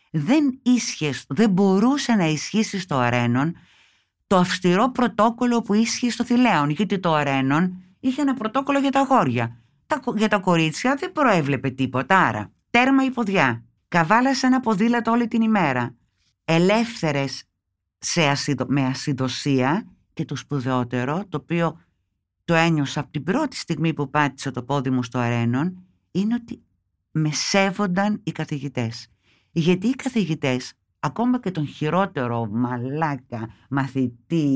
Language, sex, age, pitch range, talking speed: Greek, female, 50-69, 130-215 Hz, 135 wpm